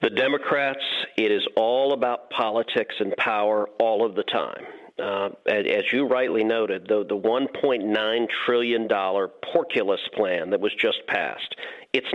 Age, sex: 40-59, male